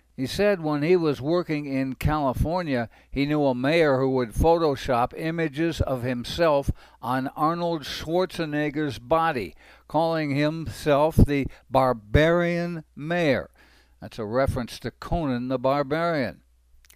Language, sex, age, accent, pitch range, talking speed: English, male, 60-79, American, 125-160 Hz, 120 wpm